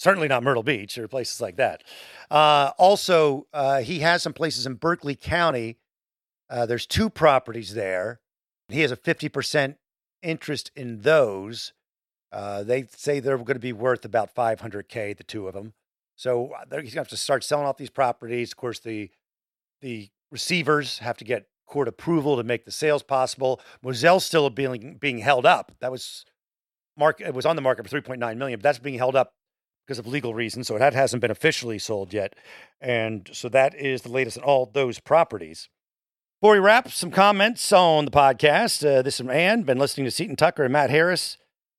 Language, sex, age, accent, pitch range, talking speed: English, male, 50-69, American, 120-160 Hz, 190 wpm